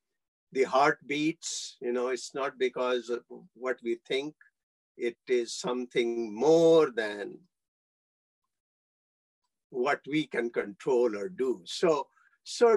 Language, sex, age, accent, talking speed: English, male, 50-69, Indian, 115 wpm